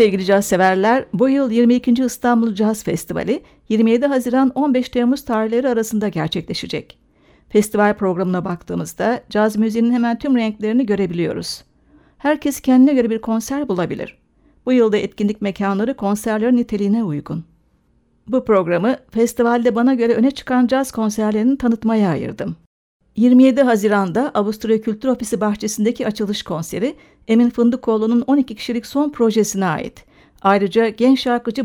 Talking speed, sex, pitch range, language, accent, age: 125 wpm, female, 205-245 Hz, Turkish, native, 60-79